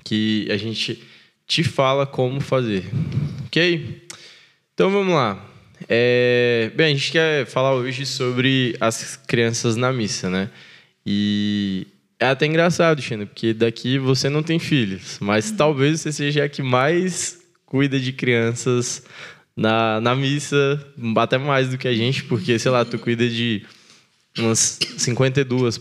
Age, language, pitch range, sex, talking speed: 20-39, Portuguese, 115-145 Hz, male, 140 wpm